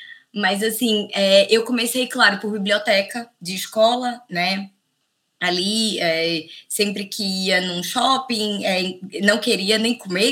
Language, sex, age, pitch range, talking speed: Portuguese, female, 20-39, 180-215 Hz, 135 wpm